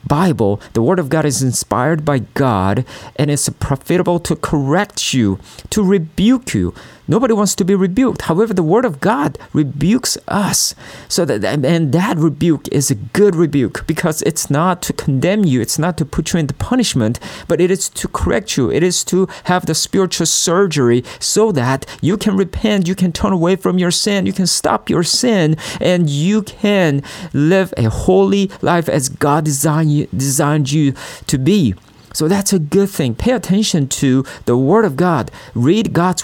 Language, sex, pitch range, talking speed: English, male, 135-185 Hz, 185 wpm